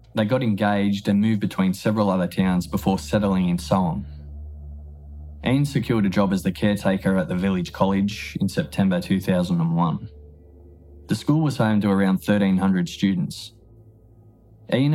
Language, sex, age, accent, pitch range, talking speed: English, male, 20-39, Australian, 95-130 Hz, 150 wpm